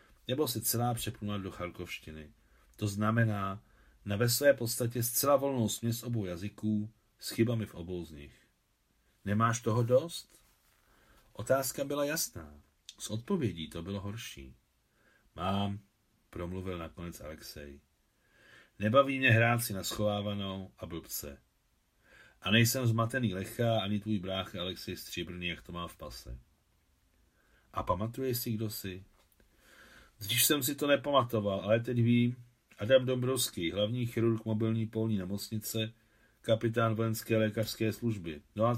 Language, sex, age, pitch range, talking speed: Czech, male, 40-59, 90-120 Hz, 135 wpm